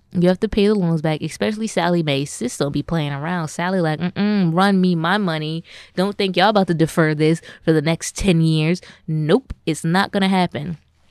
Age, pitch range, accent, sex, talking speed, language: 20-39, 160-200 Hz, American, female, 210 wpm, English